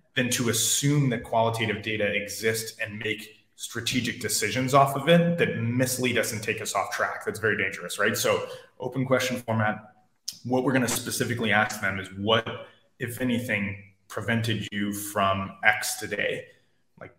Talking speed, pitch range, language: 160 wpm, 105-125 Hz, English